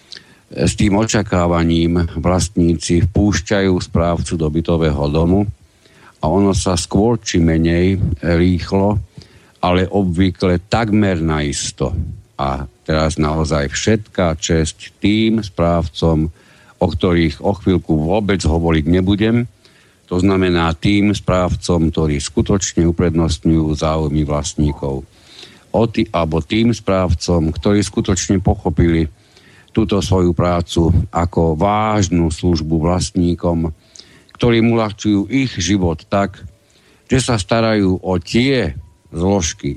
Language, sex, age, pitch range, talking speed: Slovak, male, 60-79, 85-100 Hz, 105 wpm